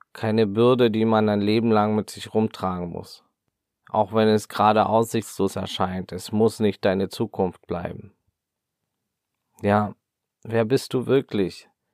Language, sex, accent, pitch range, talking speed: German, male, German, 95-115 Hz, 140 wpm